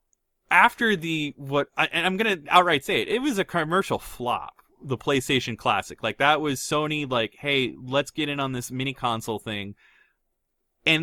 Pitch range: 125-195 Hz